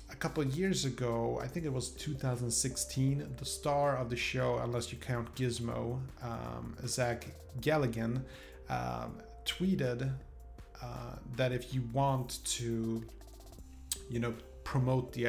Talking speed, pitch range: 135 wpm, 115-135 Hz